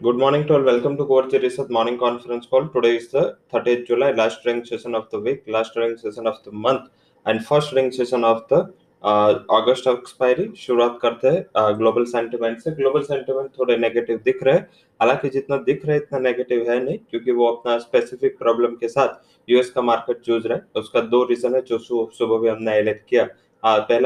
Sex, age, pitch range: male, 20-39, 115-130 Hz